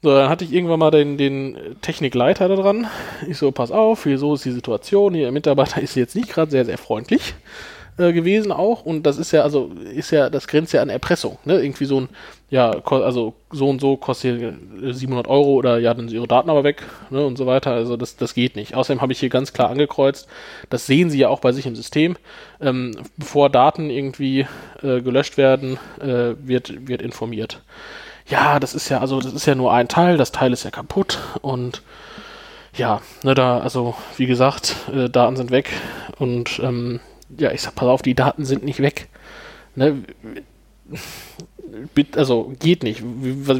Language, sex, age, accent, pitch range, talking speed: German, male, 20-39, German, 125-145 Hz, 200 wpm